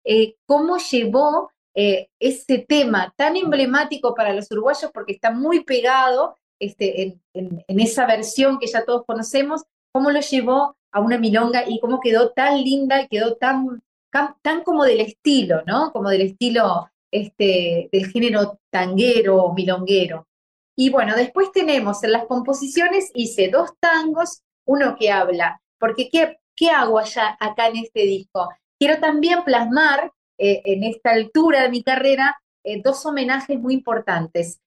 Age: 20-39